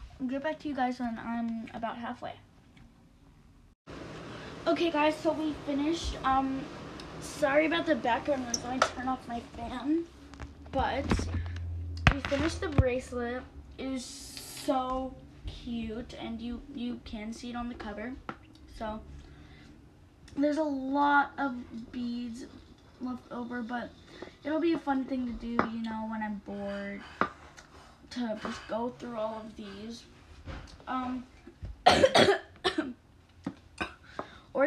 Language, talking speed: English, 130 wpm